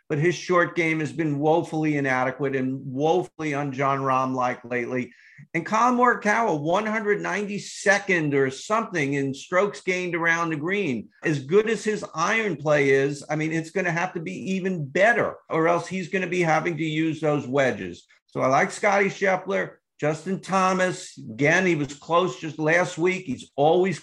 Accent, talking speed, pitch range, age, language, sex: American, 170 wpm, 145-185 Hz, 50-69, English, male